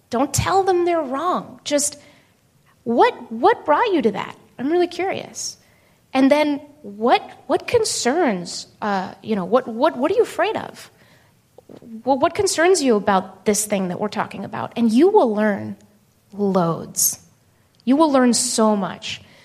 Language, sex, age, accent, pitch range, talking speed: English, female, 30-49, American, 210-275 Hz, 155 wpm